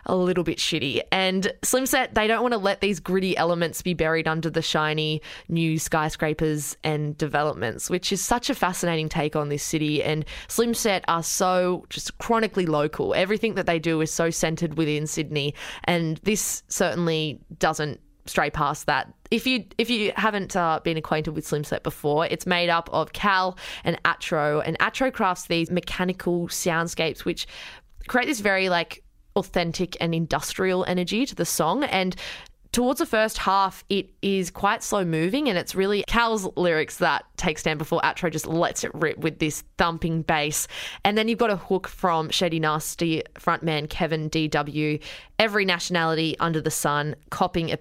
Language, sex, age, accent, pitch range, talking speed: English, female, 20-39, Australian, 155-195 Hz, 175 wpm